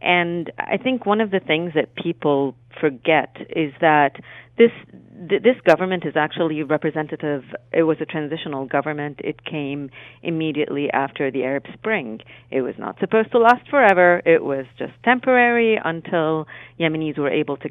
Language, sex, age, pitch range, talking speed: English, female, 40-59, 140-180 Hz, 160 wpm